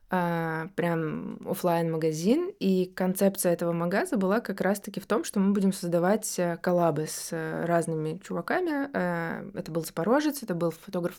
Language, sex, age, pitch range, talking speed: Russian, female, 20-39, 170-210 Hz, 150 wpm